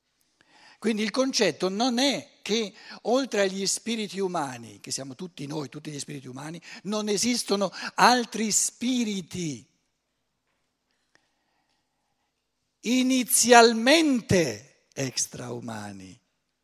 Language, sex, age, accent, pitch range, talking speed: Italian, male, 60-79, native, 165-235 Hz, 85 wpm